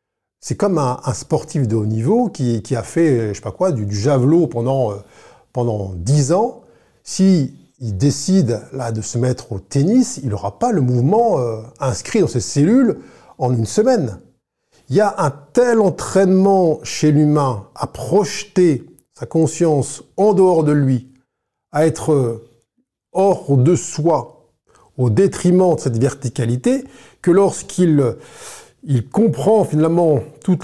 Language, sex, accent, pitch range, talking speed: French, male, French, 125-185 Hz, 155 wpm